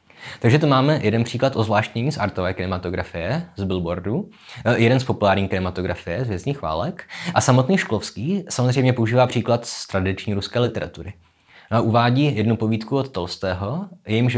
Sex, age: male, 20-39